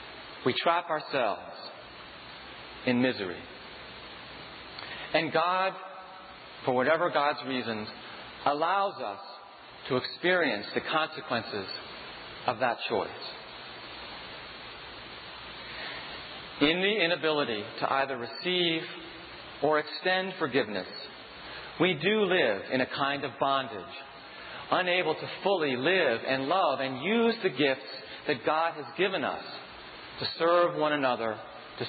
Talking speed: 105 wpm